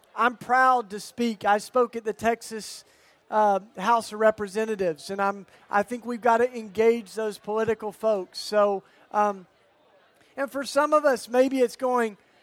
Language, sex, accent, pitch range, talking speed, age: Swedish, male, American, 215-245 Hz, 165 wpm, 40-59